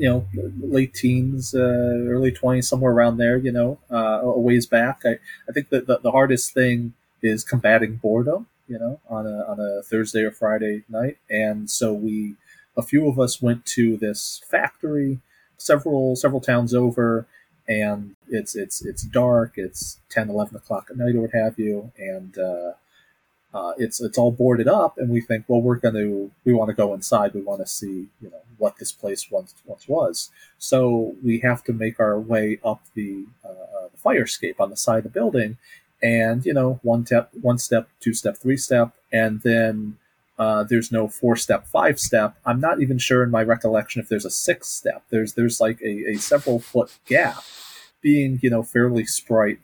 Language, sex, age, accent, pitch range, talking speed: English, male, 30-49, American, 110-125 Hz, 195 wpm